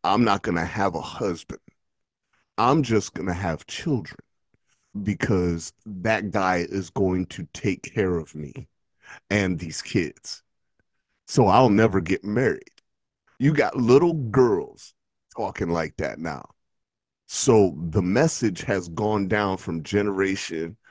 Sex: male